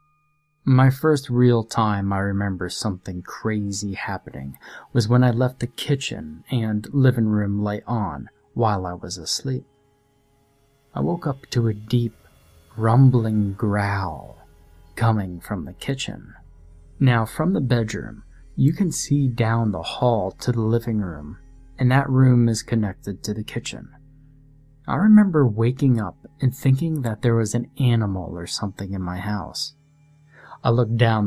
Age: 30-49